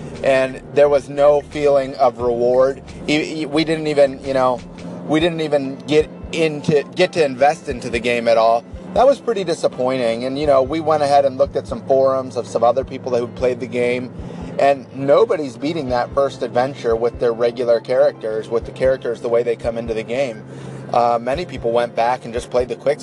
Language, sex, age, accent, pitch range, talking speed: English, male, 30-49, American, 120-150 Hz, 205 wpm